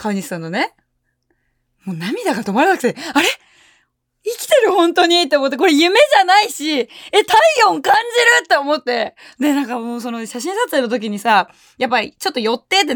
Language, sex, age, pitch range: Japanese, female, 20-39, 225-330 Hz